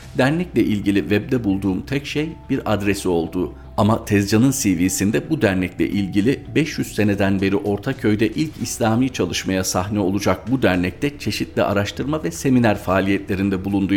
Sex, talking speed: male, 135 wpm